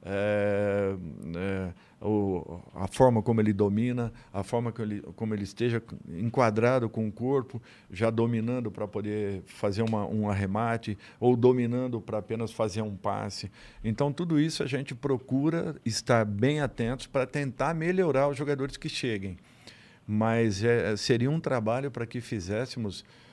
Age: 50-69